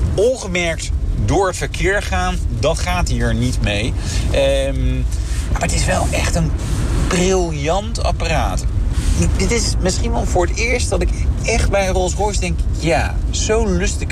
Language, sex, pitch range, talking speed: Dutch, male, 80-100 Hz, 155 wpm